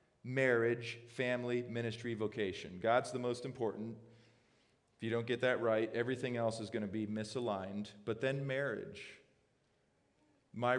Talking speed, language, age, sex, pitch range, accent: 140 wpm, English, 40-59, male, 110-130 Hz, American